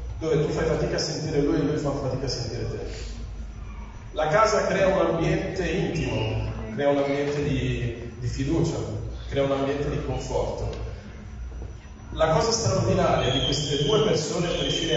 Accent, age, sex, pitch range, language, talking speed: native, 30-49, male, 120-155 Hz, Italian, 165 wpm